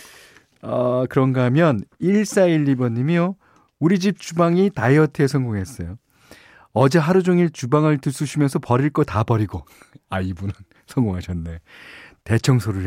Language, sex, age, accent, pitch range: Korean, male, 40-59, native, 95-145 Hz